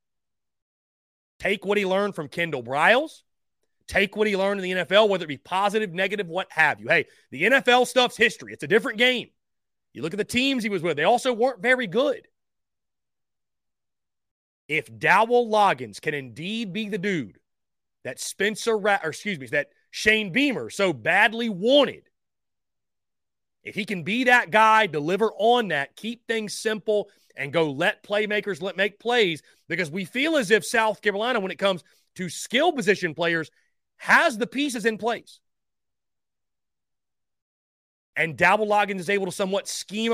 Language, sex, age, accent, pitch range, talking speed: English, male, 30-49, American, 175-220 Hz, 165 wpm